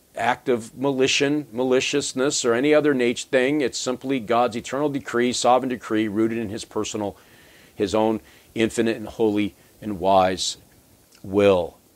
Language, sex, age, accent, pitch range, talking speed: English, male, 50-69, American, 105-130 Hz, 135 wpm